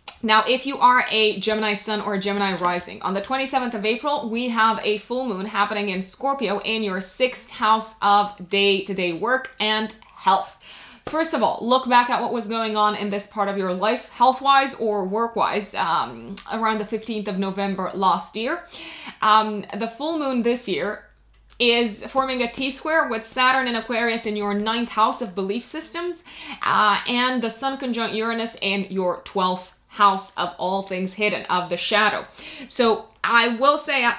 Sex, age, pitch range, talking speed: female, 20-39, 200-245 Hz, 180 wpm